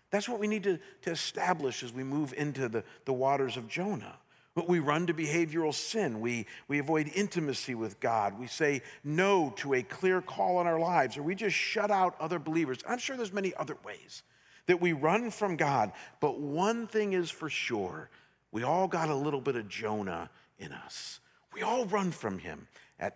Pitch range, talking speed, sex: 130-175 Hz, 200 wpm, male